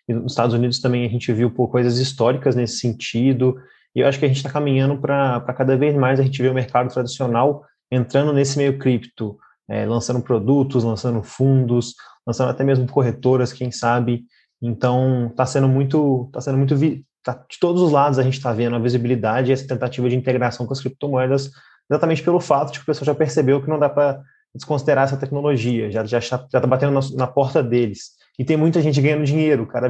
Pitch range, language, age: 125-140 Hz, Portuguese, 20-39